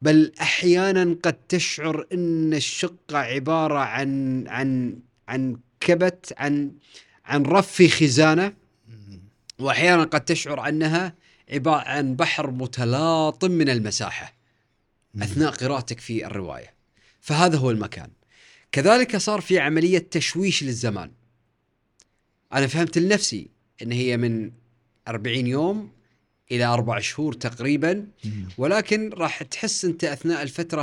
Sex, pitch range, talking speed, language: male, 120-170 Hz, 105 wpm, Arabic